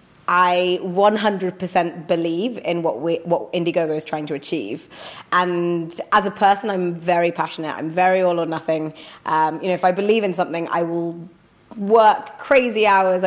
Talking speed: 165 wpm